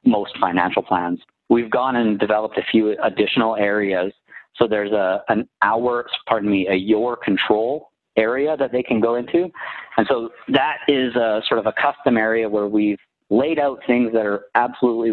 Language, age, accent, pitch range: English, 40-59, American, 95-115 Hz